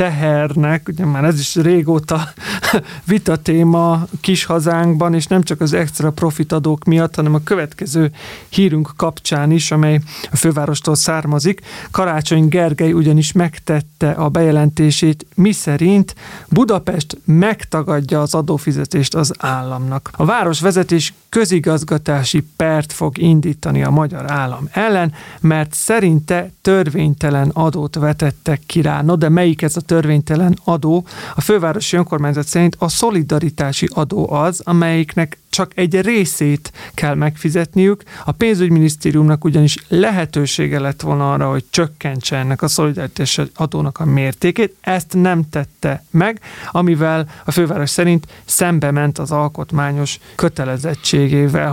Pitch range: 150-175 Hz